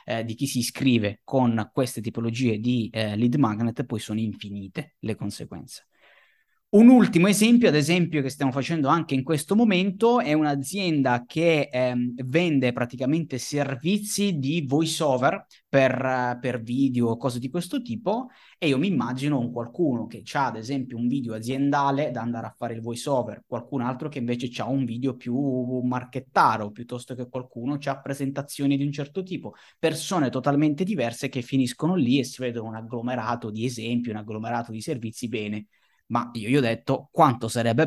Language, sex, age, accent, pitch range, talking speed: Italian, male, 20-39, native, 115-145 Hz, 170 wpm